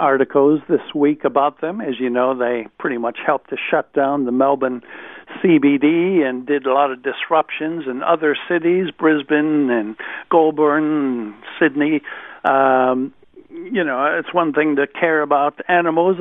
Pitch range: 135-160 Hz